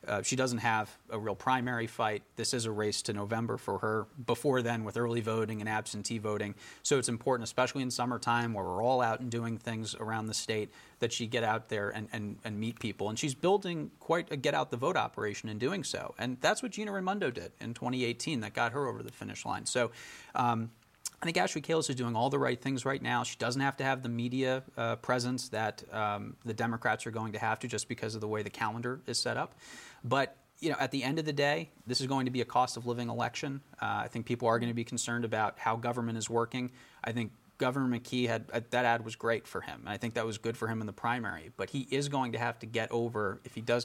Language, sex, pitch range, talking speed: English, male, 110-125 Hz, 250 wpm